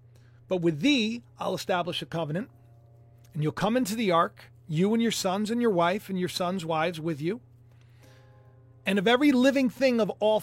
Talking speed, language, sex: 190 wpm, English, male